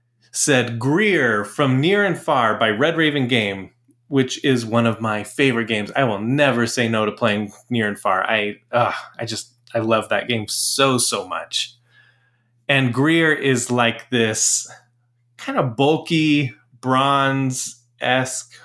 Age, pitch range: 20-39, 115-140 Hz